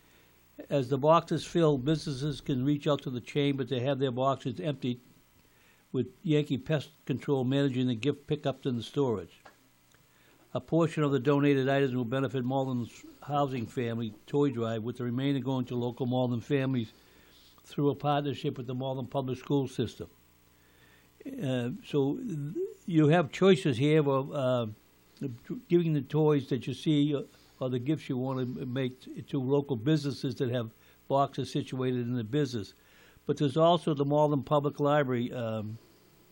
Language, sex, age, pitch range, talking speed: English, male, 60-79, 120-145 Hz, 160 wpm